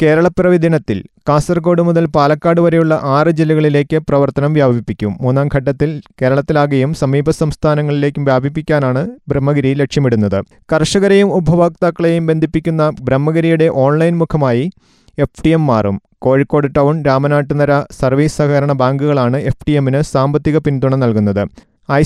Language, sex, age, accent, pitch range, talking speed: Malayalam, male, 30-49, native, 140-165 Hz, 110 wpm